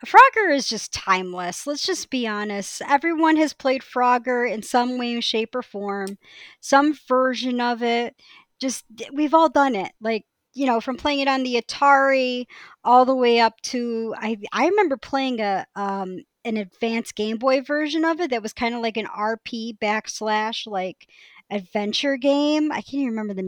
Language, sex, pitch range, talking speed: English, male, 215-285 Hz, 180 wpm